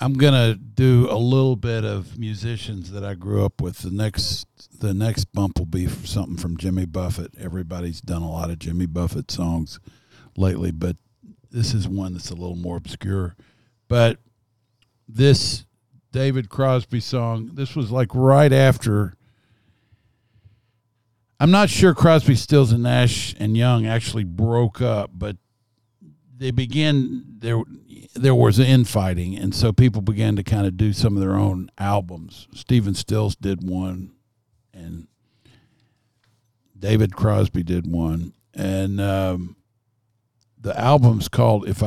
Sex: male